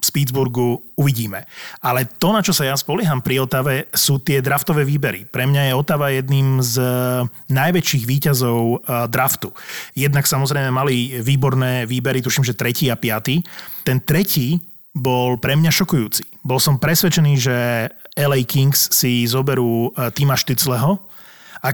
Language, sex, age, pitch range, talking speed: Slovak, male, 30-49, 125-150 Hz, 145 wpm